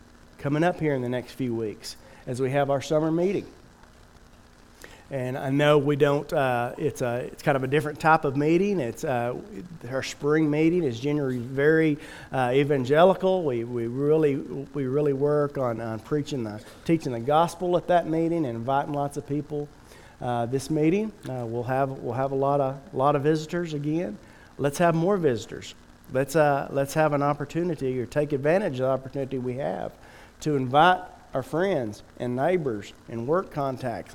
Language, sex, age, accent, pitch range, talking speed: English, male, 40-59, American, 120-155 Hz, 180 wpm